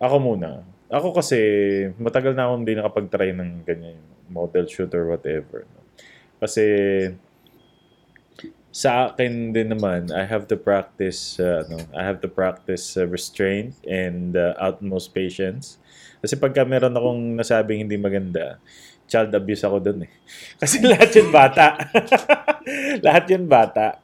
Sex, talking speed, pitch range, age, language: male, 135 wpm, 90-125 Hz, 20-39, Filipino